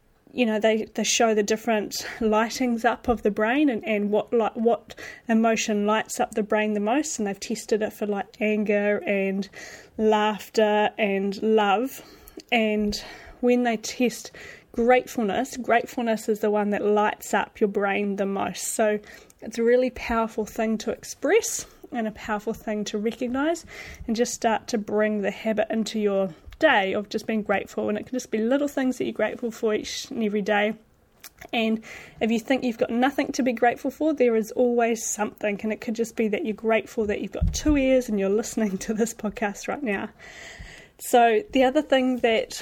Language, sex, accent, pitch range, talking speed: English, female, Australian, 210-245 Hz, 190 wpm